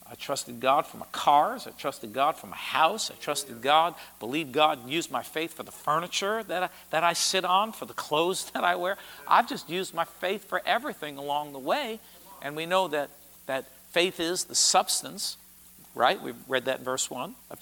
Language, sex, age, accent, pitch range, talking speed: English, male, 50-69, American, 145-195 Hz, 210 wpm